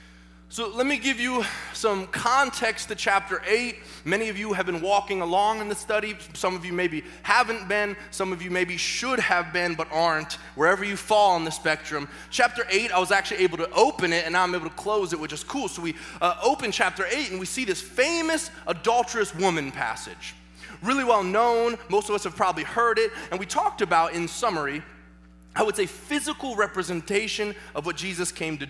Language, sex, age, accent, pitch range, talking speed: English, male, 20-39, American, 160-220 Hz, 210 wpm